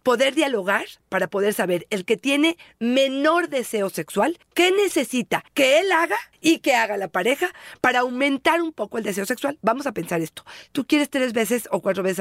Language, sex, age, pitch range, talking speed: Spanish, female, 40-59, 210-270 Hz, 190 wpm